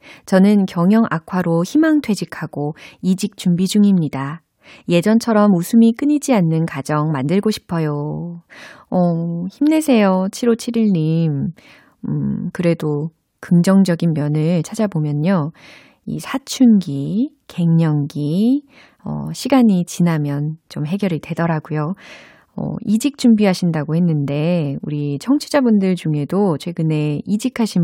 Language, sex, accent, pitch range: Korean, female, native, 155-215 Hz